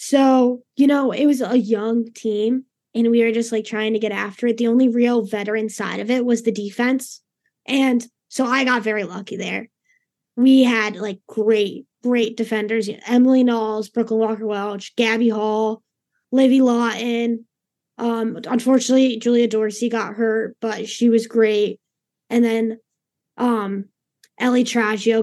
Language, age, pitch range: English, 10-29, 215-245 Hz